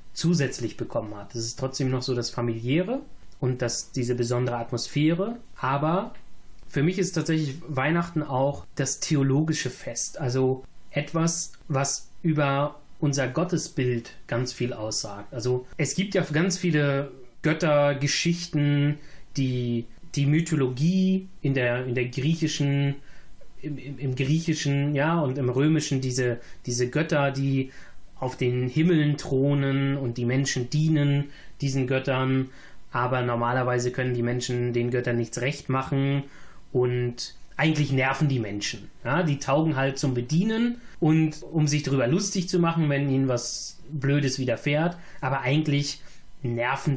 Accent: German